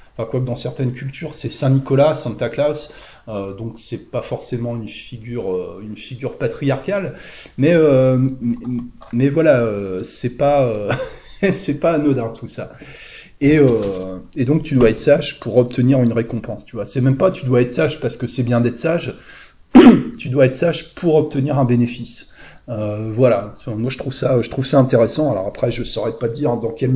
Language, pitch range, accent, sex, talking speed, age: French, 110-135 Hz, French, male, 205 wpm, 30-49